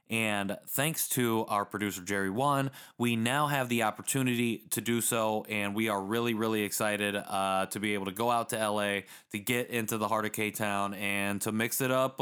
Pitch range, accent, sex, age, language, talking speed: 105-130 Hz, American, male, 20-39, English, 205 wpm